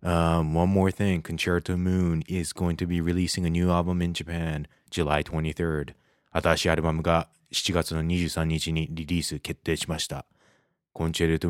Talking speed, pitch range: 100 wpm, 75-85 Hz